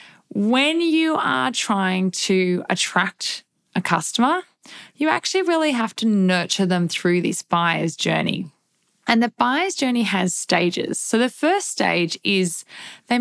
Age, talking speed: 20-39, 140 wpm